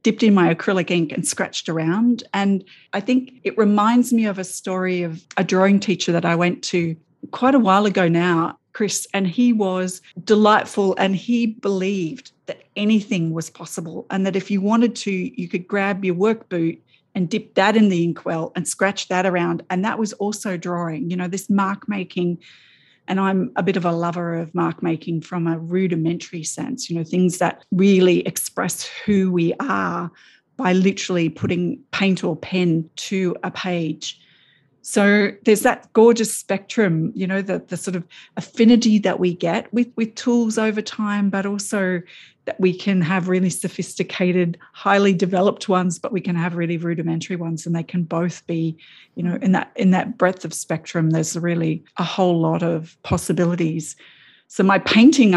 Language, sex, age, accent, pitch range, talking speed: English, female, 40-59, Australian, 170-205 Hz, 180 wpm